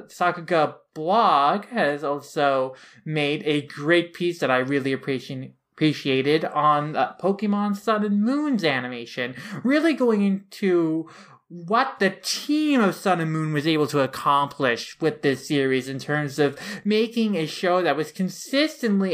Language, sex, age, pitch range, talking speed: English, male, 20-39, 145-185 Hz, 140 wpm